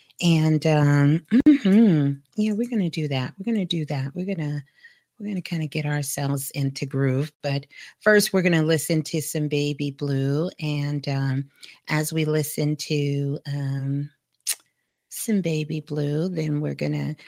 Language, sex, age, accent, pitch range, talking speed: English, female, 40-59, American, 155-225 Hz, 155 wpm